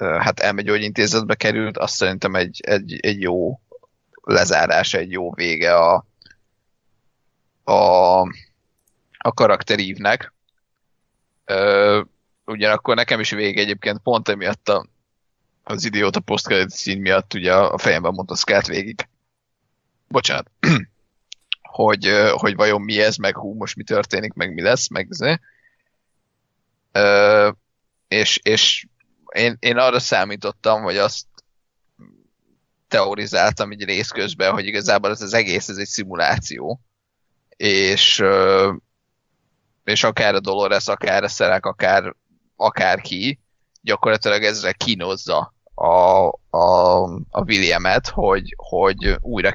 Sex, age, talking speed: male, 30-49, 115 wpm